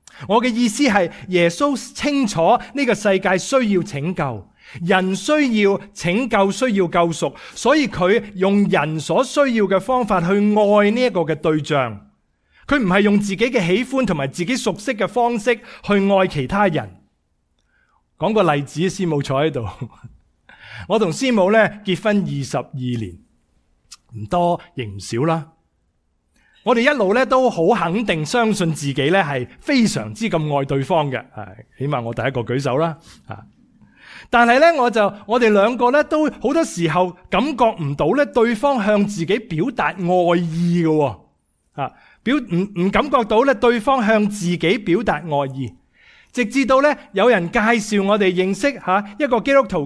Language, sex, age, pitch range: English, male, 30-49, 160-240 Hz